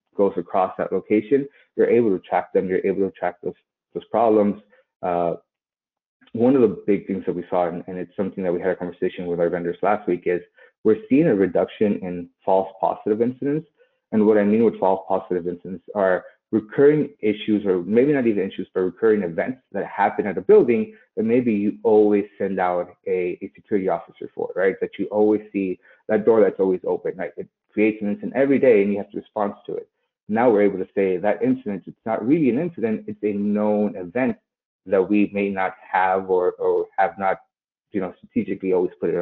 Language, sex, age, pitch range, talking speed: English, male, 30-49, 95-145 Hz, 210 wpm